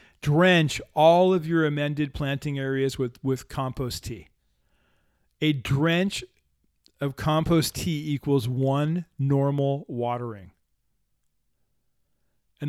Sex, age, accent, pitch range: male, 40-59, American, 130-165 Hz